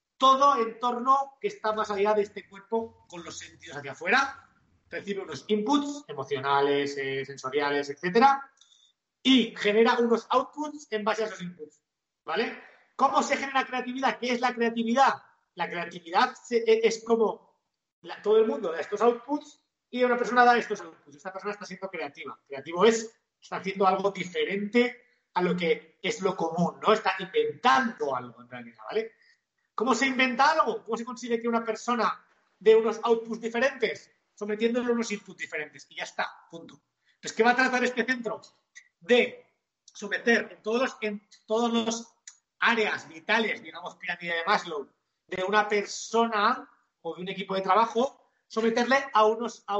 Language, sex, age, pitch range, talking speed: Spanish, male, 40-59, 195-245 Hz, 160 wpm